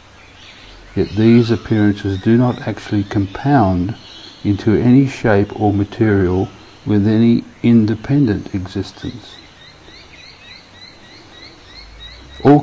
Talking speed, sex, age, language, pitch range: 80 wpm, male, 50-69, English, 95-110 Hz